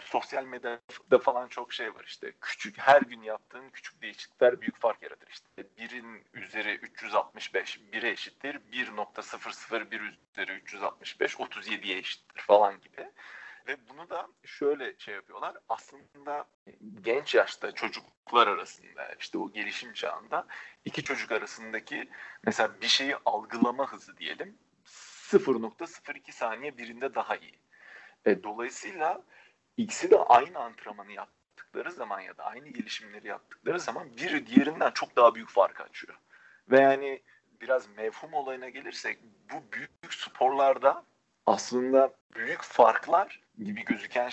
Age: 40-59